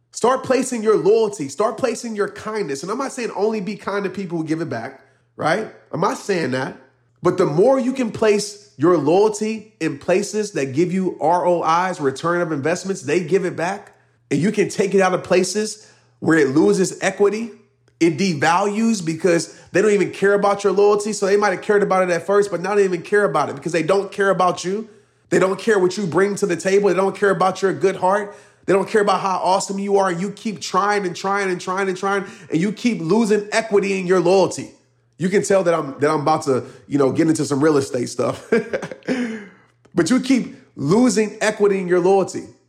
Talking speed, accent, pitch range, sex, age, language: 220 wpm, American, 175-215 Hz, male, 30-49, English